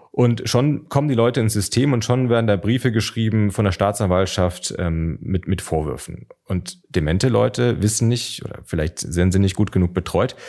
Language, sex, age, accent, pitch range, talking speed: German, male, 30-49, German, 95-125 Hz, 190 wpm